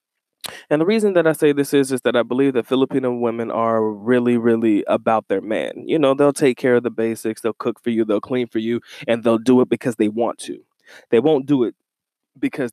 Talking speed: 235 wpm